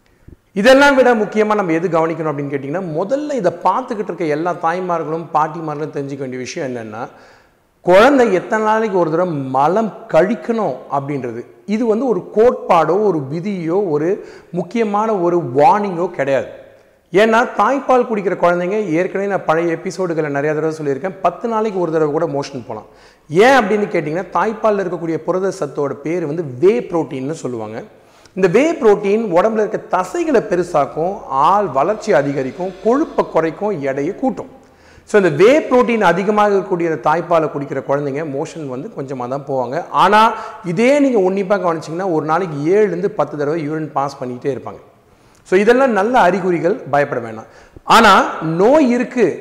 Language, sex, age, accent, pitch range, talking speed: Tamil, male, 40-59, native, 150-215 Hz, 140 wpm